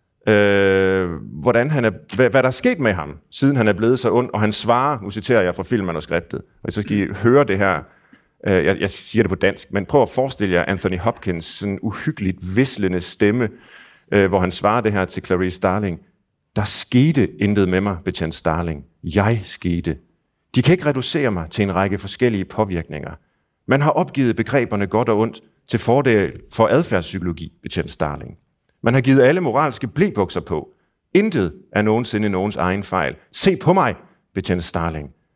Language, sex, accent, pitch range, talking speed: Danish, male, native, 90-110 Hz, 180 wpm